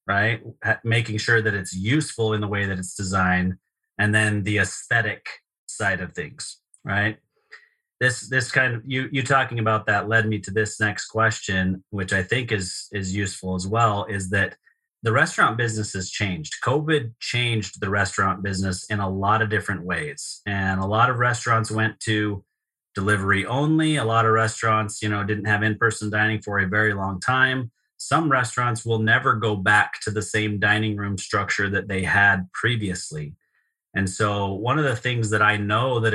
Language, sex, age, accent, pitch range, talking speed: English, male, 30-49, American, 100-115 Hz, 185 wpm